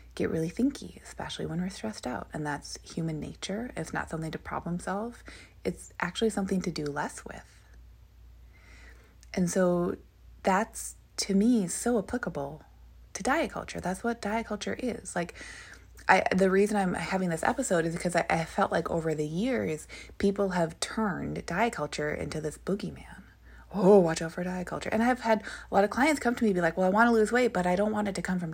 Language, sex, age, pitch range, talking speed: English, female, 20-39, 175-235 Hz, 205 wpm